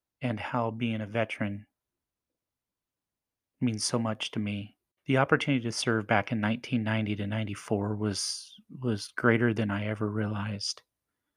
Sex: male